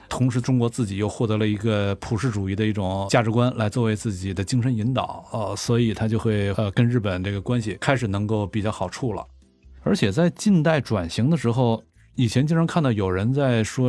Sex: male